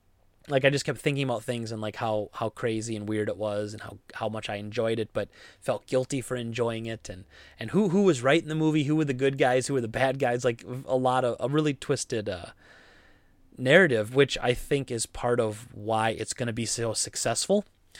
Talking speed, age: 235 wpm, 20-39